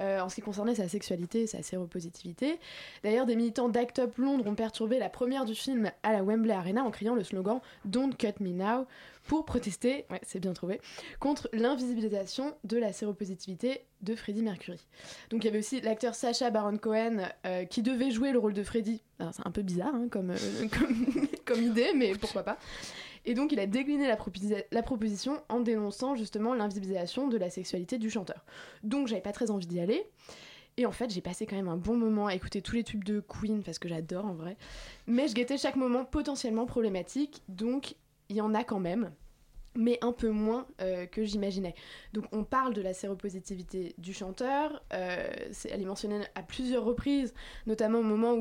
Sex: female